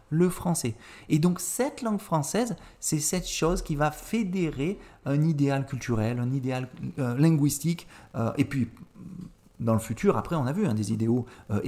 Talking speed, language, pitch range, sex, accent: 175 wpm, French, 115-170 Hz, male, French